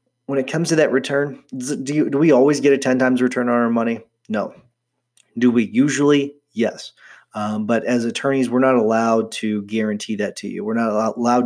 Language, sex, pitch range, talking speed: English, male, 110-135 Hz, 205 wpm